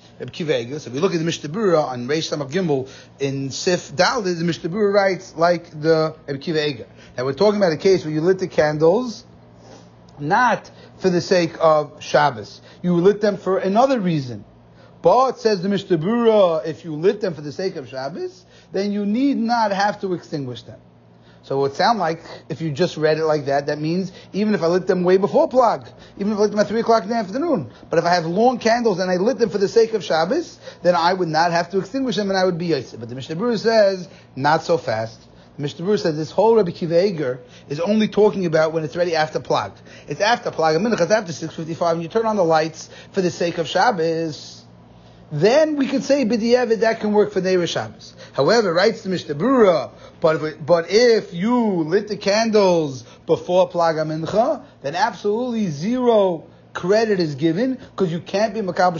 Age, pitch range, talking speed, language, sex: 30-49, 155-215 Hz, 210 wpm, English, male